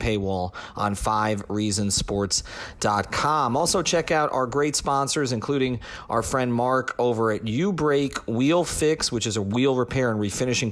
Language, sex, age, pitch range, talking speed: English, male, 40-59, 105-135 Hz, 140 wpm